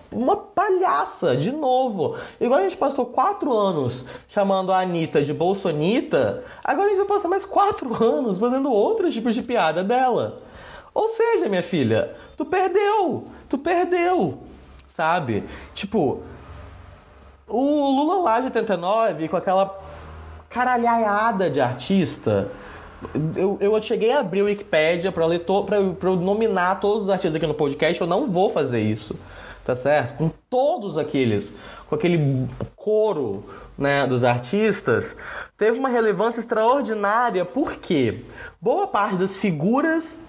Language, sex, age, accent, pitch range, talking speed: Portuguese, male, 20-39, Brazilian, 175-255 Hz, 140 wpm